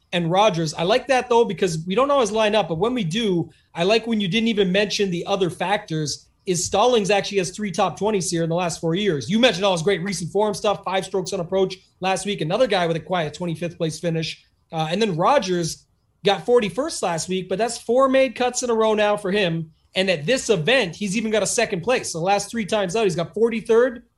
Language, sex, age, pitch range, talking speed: English, male, 30-49, 180-225 Hz, 245 wpm